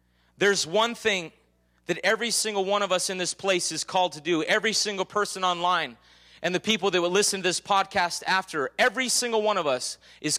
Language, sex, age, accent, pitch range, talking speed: English, male, 30-49, American, 145-195 Hz, 210 wpm